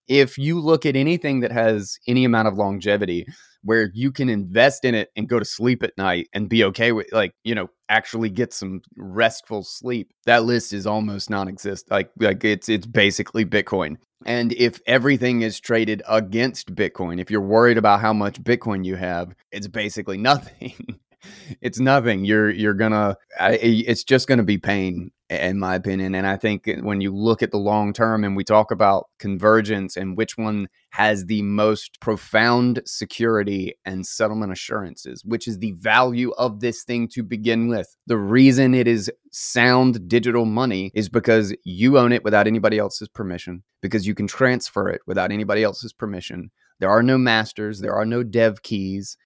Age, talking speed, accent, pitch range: 30-49, 180 wpm, American, 100-120 Hz